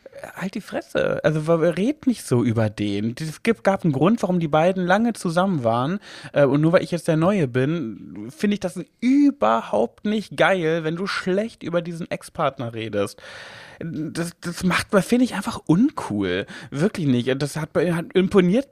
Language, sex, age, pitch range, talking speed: German, male, 30-49, 130-185 Hz, 160 wpm